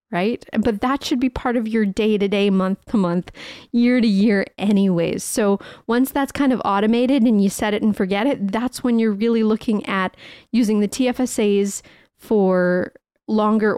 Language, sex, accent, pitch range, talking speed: English, female, American, 200-250 Hz, 185 wpm